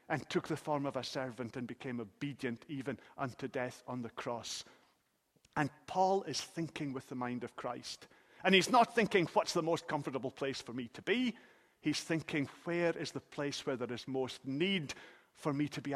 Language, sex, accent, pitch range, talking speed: English, male, British, 135-190 Hz, 200 wpm